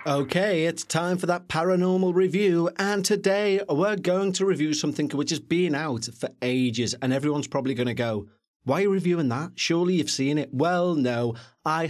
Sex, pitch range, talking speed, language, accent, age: male, 125-175 Hz, 190 wpm, English, British, 30-49